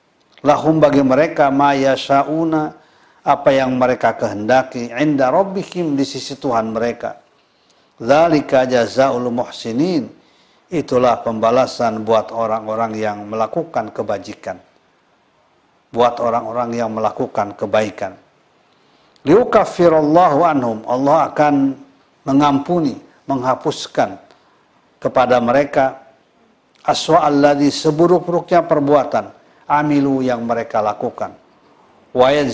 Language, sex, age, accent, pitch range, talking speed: Indonesian, male, 50-69, native, 120-145 Hz, 85 wpm